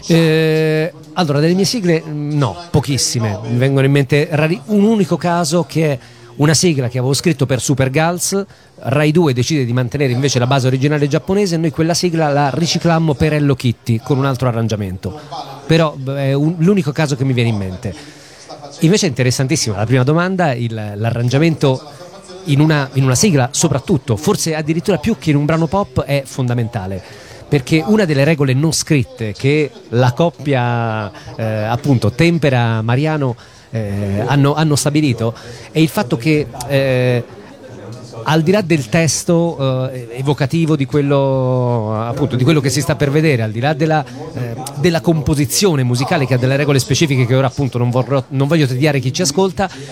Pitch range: 130-160 Hz